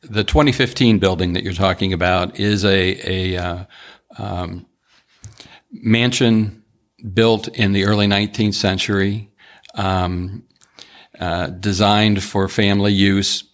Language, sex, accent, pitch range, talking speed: English, male, American, 90-105 Hz, 110 wpm